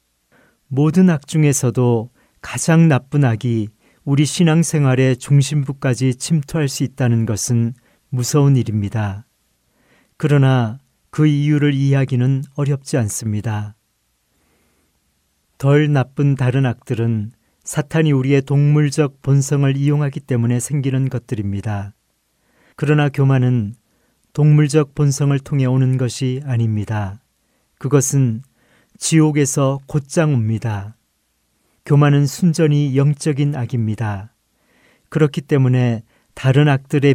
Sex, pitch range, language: male, 115-145 Hz, Korean